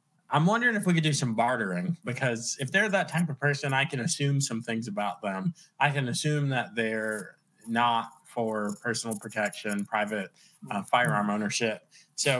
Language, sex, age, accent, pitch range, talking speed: English, male, 20-39, American, 115-165 Hz, 175 wpm